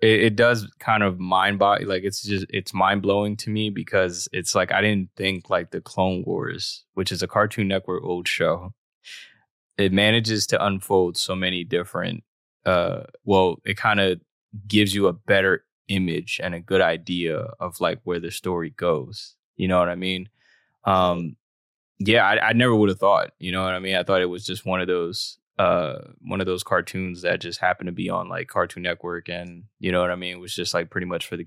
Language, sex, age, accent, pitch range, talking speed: English, male, 20-39, American, 90-105 Hz, 215 wpm